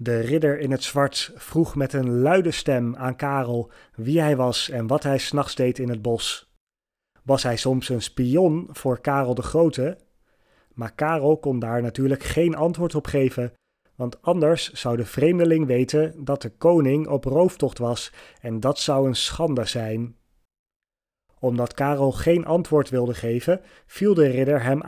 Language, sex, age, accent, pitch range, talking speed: Dutch, male, 30-49, Dutch, 120-155 Hz, 165 wpm